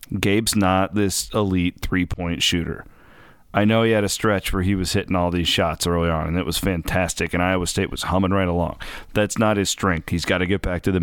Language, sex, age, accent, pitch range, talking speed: English, male, 30-49, American, 85-110 Hz, 235 wpm